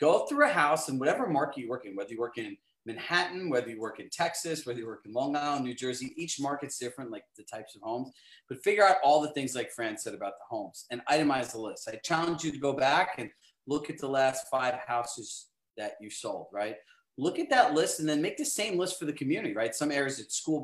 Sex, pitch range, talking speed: male, 130-170 Hz, 255 wpm